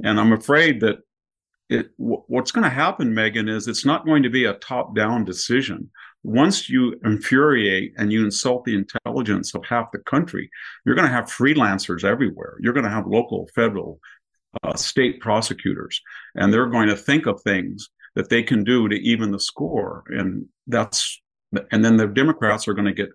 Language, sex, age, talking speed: English, male, 50-69, 180 wpm